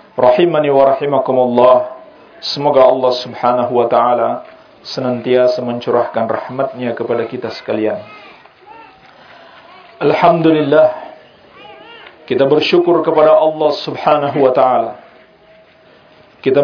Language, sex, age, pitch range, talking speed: Indonesian, male, 50-69, 130-160 Hz, 85 wpm